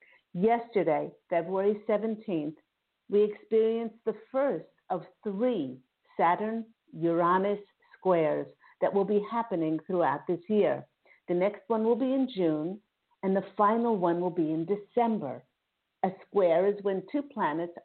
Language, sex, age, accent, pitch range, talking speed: English, female, 50-69, American, 170-230 Hz, 135 wpm